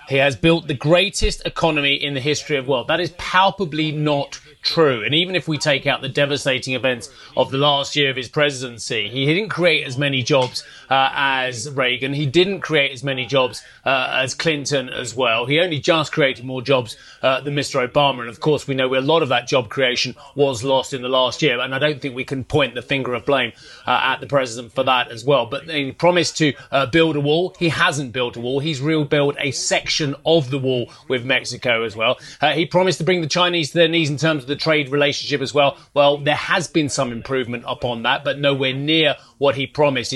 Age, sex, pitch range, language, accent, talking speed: 30-49, male, 130-155 Hz, English, British, 230 wpm